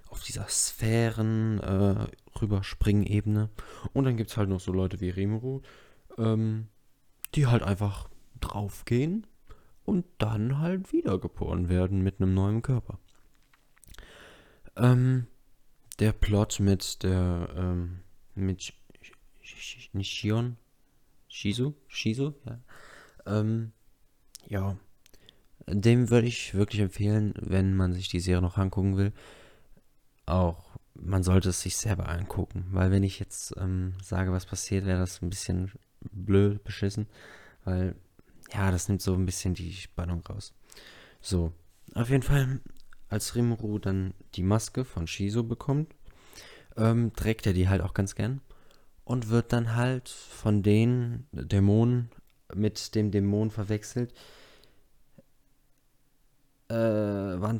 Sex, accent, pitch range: male, German, 95-120 Hz